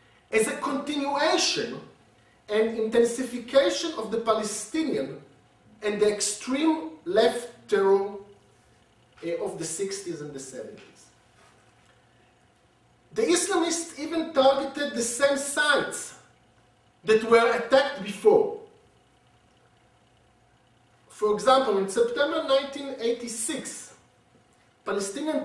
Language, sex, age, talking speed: English, male, 50-69, 85 wpm